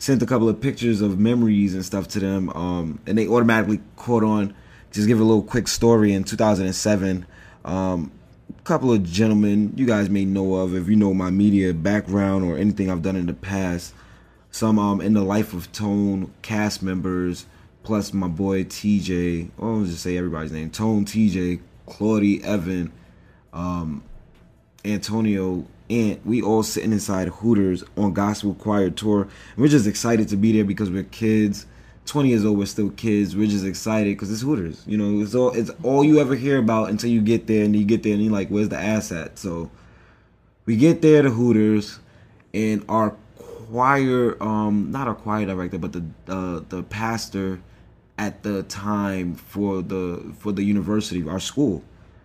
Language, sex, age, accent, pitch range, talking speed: English, male, 20-39, American, 95-110 Hz, 185 wpm